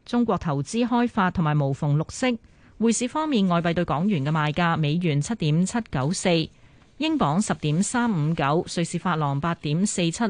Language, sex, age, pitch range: Chinese, female, 30-49, 155-225 Hz